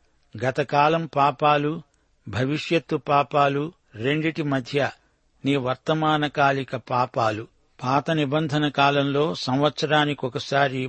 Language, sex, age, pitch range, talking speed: Telugu, male, 60-79, 130-150 Hz, 75 wpm